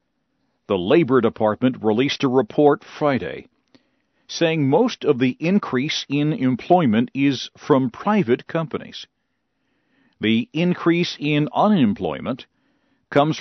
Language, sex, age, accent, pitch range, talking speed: English, male, 50-69, American, 130-185 Hz, 105 wpm